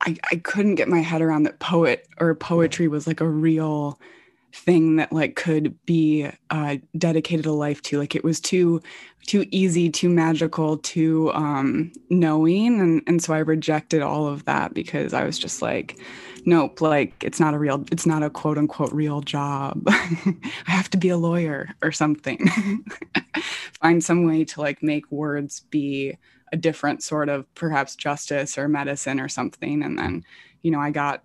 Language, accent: English, American